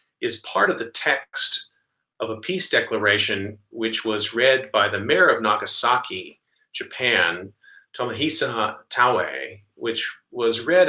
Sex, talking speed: male, 125 wpm